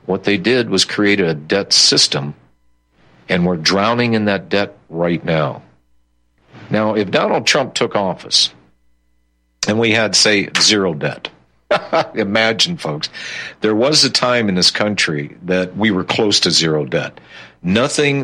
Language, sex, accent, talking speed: English, male, American, 150 wpm